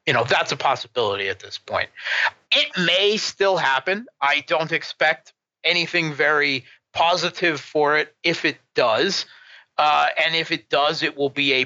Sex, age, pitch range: male, 30-49, 120-155 Hz